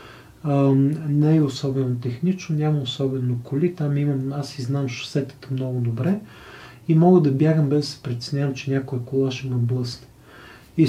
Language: Bulgarian